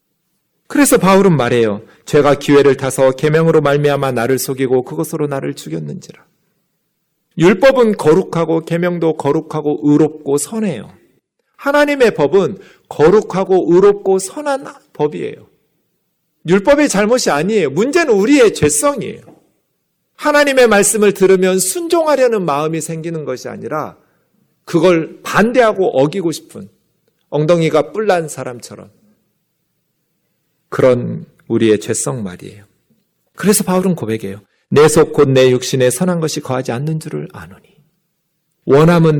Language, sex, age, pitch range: Korean, male, 40-59, 150-225 Hz